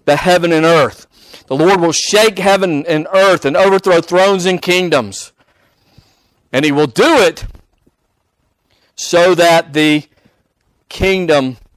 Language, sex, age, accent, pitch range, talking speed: English, male, 50-69, American, 110-155 Hz, 125 wpm